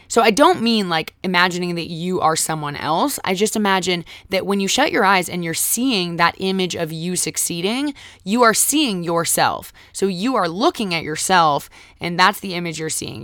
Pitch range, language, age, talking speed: 160-200 Hz, English, 20-39, 200 wpm